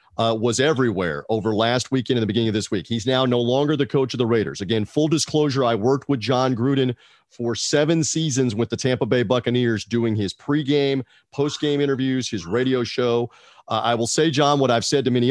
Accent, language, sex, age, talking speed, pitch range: American, English, male, 40-59, 220 wpm, 115-140 Hz